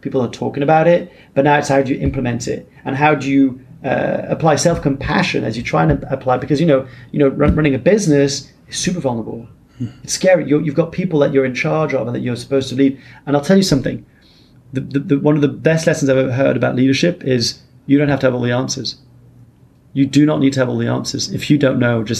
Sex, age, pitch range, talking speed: male, 30-49, 120-145 Hz, 240 wpm